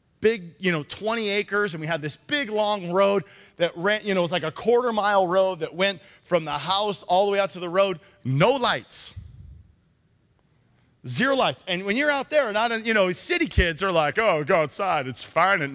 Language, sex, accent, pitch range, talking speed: English, male, American, 170-280 Hz, 220 wpm